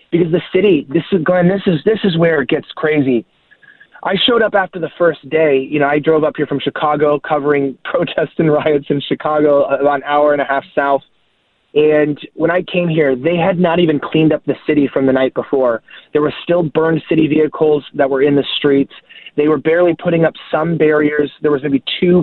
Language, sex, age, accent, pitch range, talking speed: English, male, 20-39, American, 145-170 Hz, 220 wpm